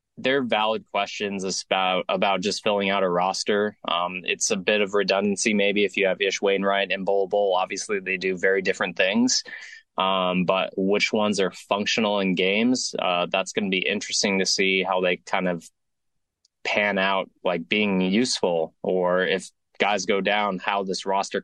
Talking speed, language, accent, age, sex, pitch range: 180 wpm, English, American, 20-39, male, 90-105 Hz